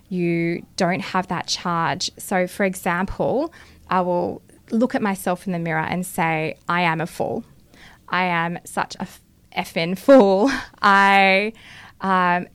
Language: English